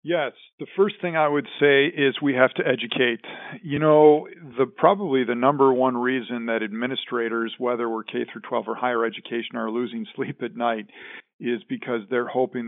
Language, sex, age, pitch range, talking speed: English, male, 50-69, 115-140 Hz, 185 wpm